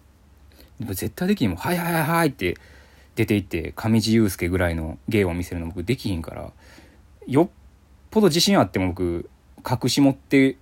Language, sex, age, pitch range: Japanese, male, 20-39, 75-105 Hz